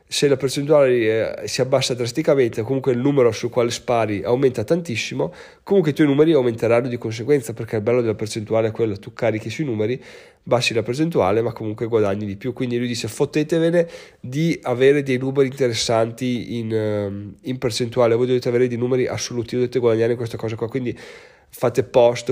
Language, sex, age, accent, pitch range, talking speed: Italian, male, 30-49, native, 110-130 Hz, 185 wpm